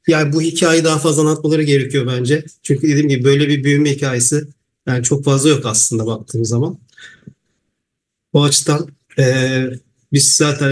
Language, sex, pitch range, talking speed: English, male, 135-155 Hz, 150 wpm